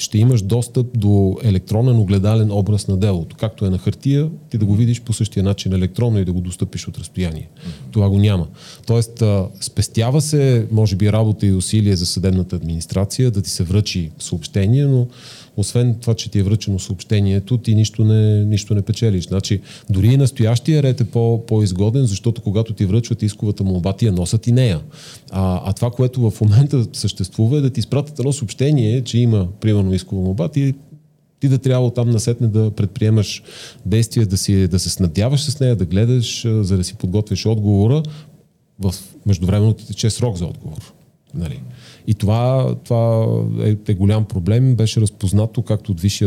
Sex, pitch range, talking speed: male, 95-120 Hz, 180 wpm